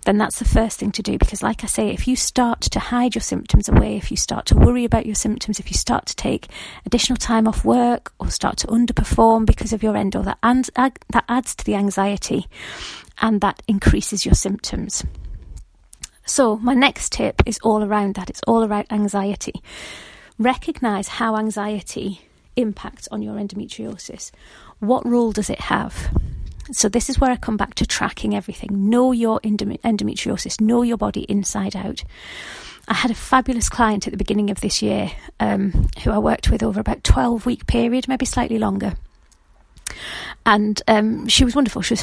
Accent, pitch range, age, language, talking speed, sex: British, 205-240 Hz, 30-49, English, 180 wpm, female